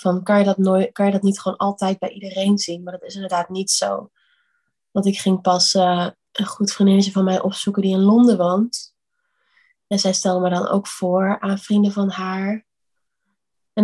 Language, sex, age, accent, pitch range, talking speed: Dutch, female, 20-39, Dutch, 190-215 Hz, 205 wpm